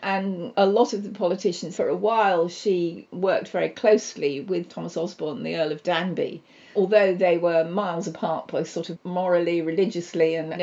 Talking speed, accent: 180 wpm, British